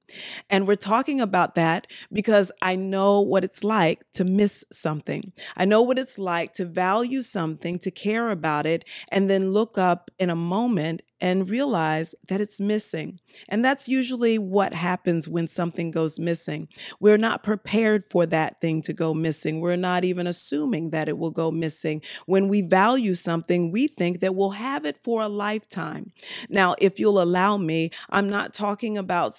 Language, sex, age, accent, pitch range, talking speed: English, female, 40-59, American, 170-210 Hz, 180 wpm